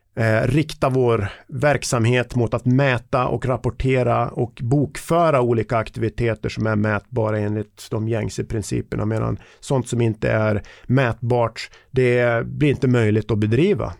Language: Swedish